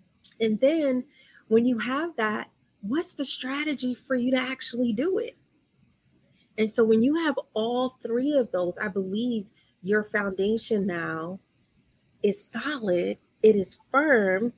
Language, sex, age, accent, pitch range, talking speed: English, female, 30-49, American, 185-240 Hz, 140 wpm